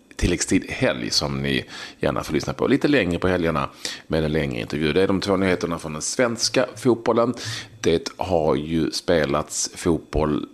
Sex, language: male, Swedish